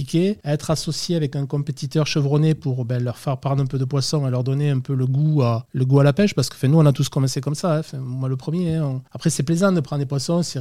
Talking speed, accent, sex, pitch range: 305 wpm, French, male, 130-155 Hz